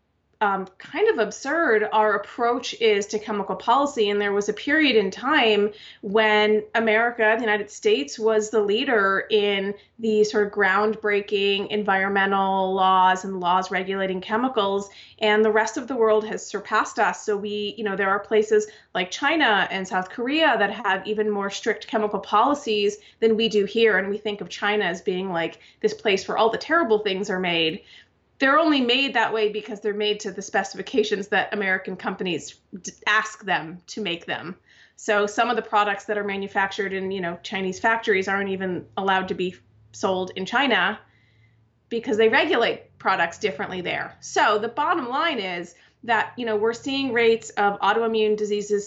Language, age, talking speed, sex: English, 30-49, 180 wpm, female